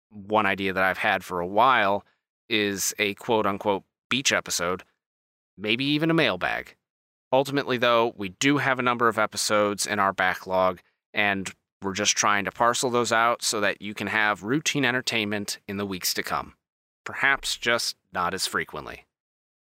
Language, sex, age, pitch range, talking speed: English, male, 30-49, 100-130 Hz, 165 wpm